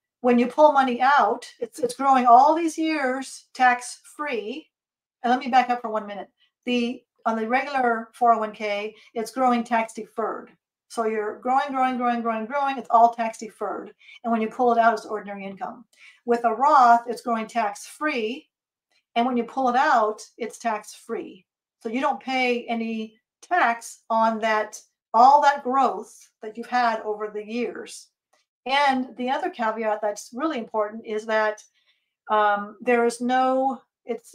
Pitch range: 220-250 Hz